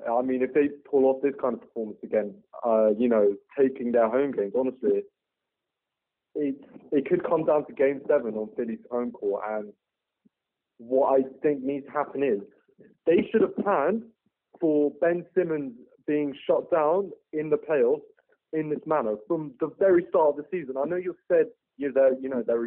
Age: 30-49